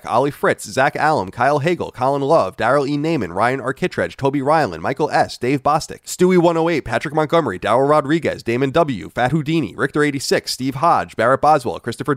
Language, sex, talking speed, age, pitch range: English, male, 180 wpm, 30-49, 120-160 Hz